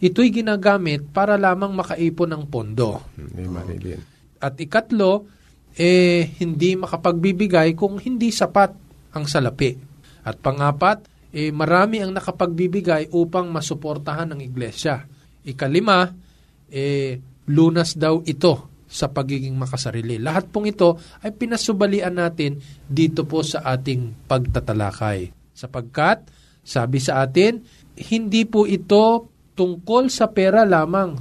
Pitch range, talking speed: 135-190 Hz, 110 wpm